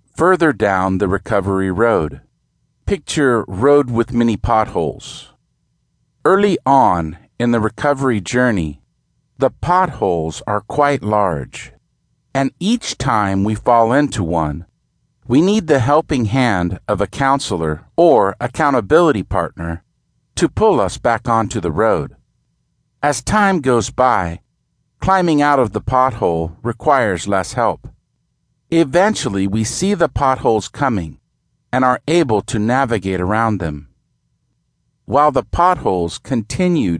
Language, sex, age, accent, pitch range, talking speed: English, male, 50-69, American, 95-135 Hz, 120 wpm